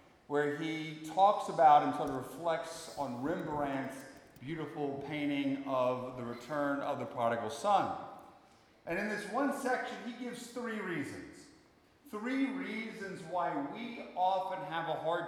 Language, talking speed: English, 140 wpm